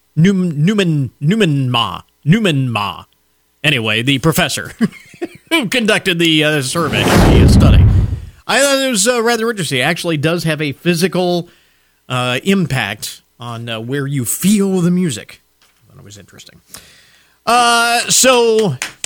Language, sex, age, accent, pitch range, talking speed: English, male, 40-59, American, 135-210 Hz, 150 wpm